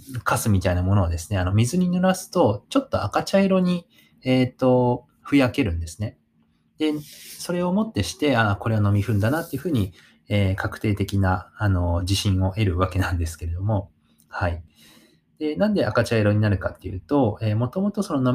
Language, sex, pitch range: Japanese, male, 90-130 Hz